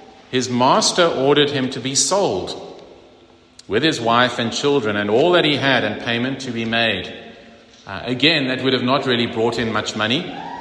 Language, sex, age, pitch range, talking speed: English, male, 40-59, 110-150 Hz, 185 wpm